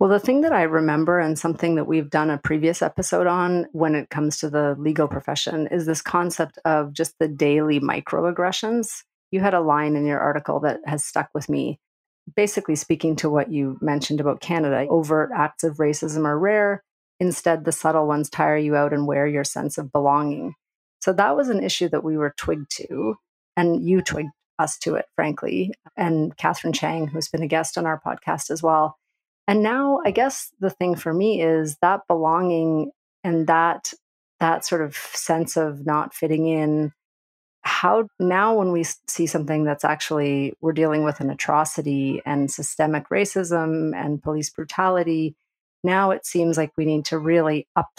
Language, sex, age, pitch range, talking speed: English, female, 30-49, 150-175 Hz, 185 wpm